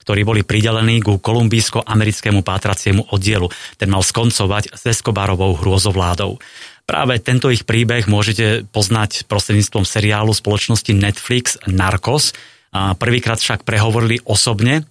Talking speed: 115 wpm